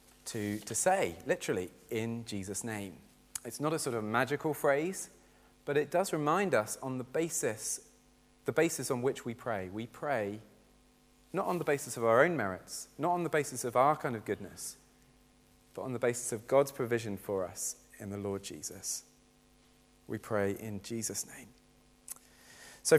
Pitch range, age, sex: 105-135 Hz, 30-49, male